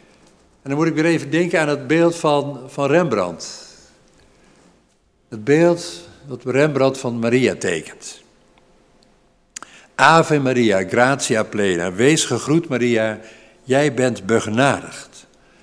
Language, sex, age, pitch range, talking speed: Dutch, male, 50-69, 120-160 Hz, 115 wpm